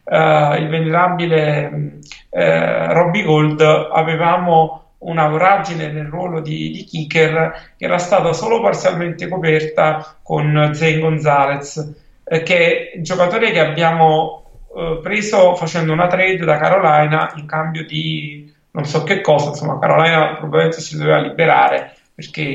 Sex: male